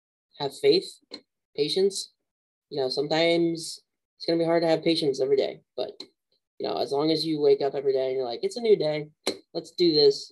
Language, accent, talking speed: English, American, 215 wpm